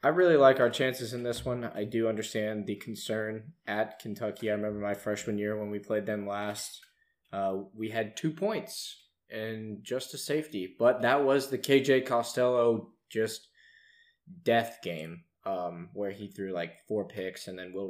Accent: American